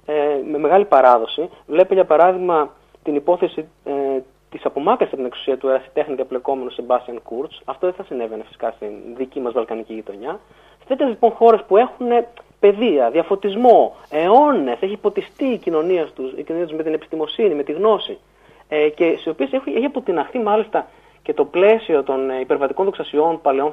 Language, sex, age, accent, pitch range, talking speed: Greek, male, 30-49, native, 140-205 Hz, 155 wpm